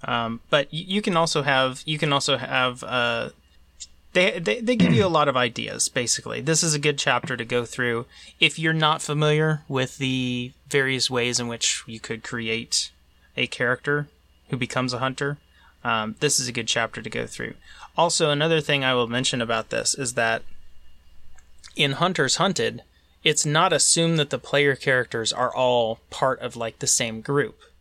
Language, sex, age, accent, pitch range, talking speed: English, male, 30-49, American, 115-140 Hz, 185 wpm